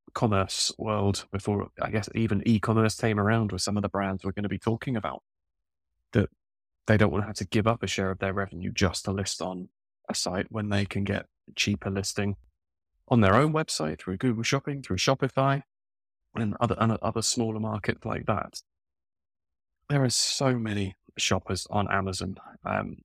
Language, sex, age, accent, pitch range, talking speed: English, male, 20-39, British, 95-110 Hz, 180 wpm